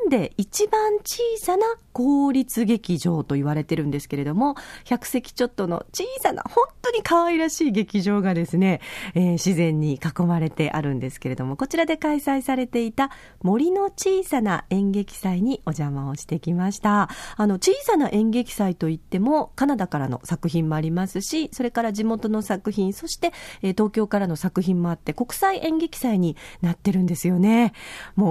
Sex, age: female, 40-59